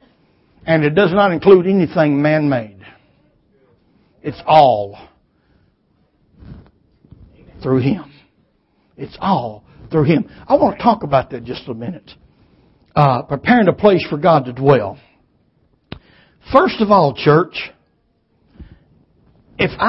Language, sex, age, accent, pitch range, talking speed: English, male, 60-79, American, 155-205 Hz, 110 wpm